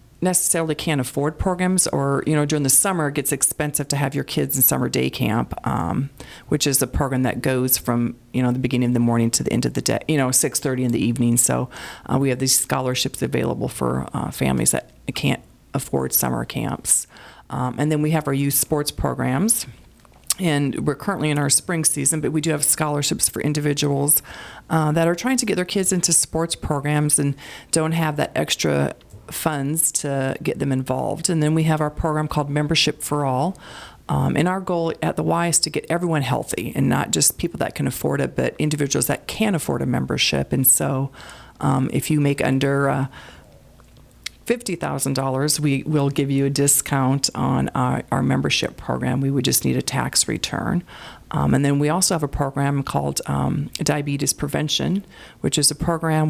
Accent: American